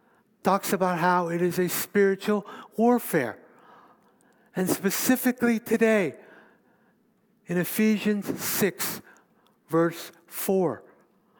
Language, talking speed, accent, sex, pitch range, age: English, 85 wpm, American, male, 150-215 Hz, 60-79